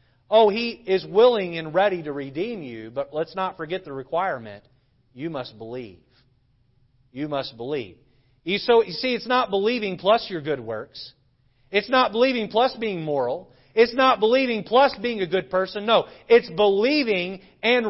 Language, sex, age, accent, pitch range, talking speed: English, male, 40-59, American, 125-185 Hz, 165 wpm